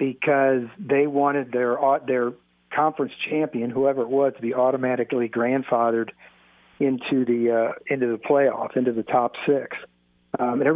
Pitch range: 115-145 Hz